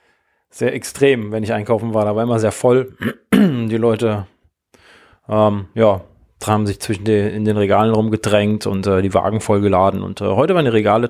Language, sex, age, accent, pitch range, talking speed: German, male, 20-39, German, 105-120 Hz, 185 wpm